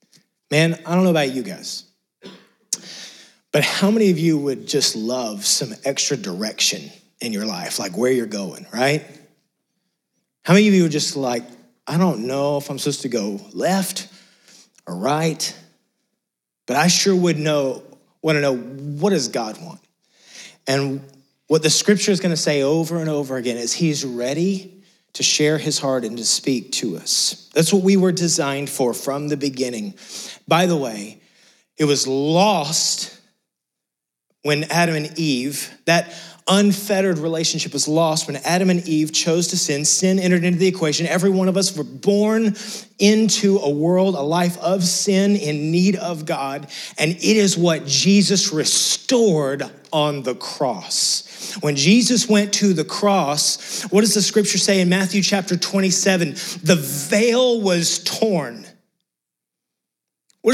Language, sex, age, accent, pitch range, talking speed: English, male, 30-49, American, 145-195 Hz, 160 wpm